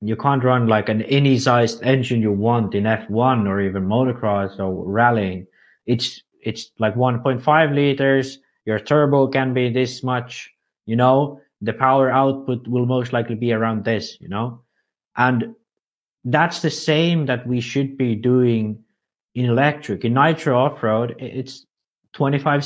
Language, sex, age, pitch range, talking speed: English, male, 20-39, 110-140 Hz, 155 wpm